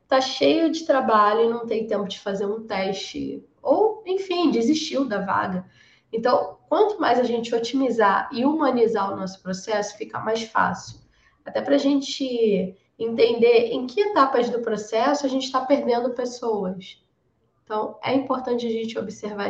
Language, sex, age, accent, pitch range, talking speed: Portuguese, female, 10-29, Brazilian, 210-270 Hz, 160 wpm